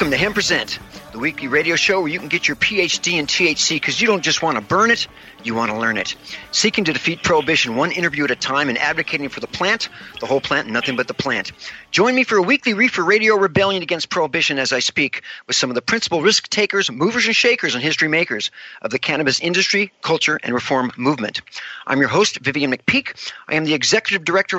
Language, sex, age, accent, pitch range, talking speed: English, male, 50-69, American, 145-205 Hz, 230 wpm